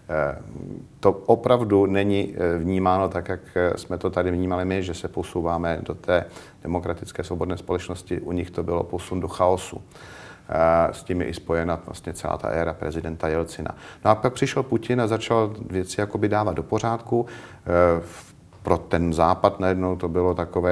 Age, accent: 50-69, native